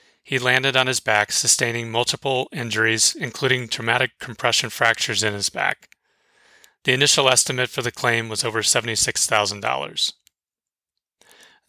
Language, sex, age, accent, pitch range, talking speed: English, male, 30-49, American, 115-135 Hz, 125 wpm